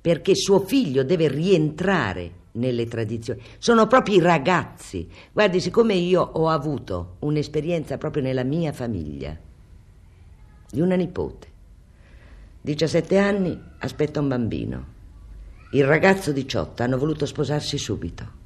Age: 50-69